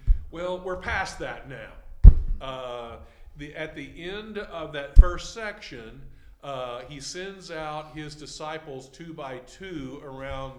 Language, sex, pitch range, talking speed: English, male, 130-160 Hz, 135 wpm